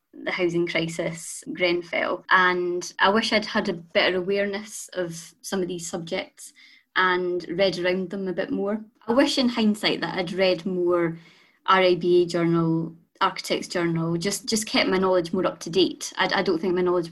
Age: 20-39